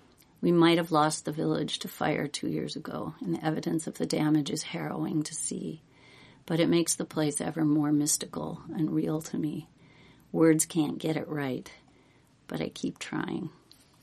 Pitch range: 145-160 Hz